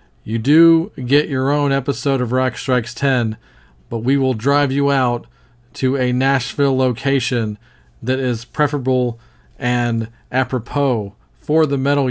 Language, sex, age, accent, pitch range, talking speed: English, male, 40-59, American, 115-140 Hz, 140 wpm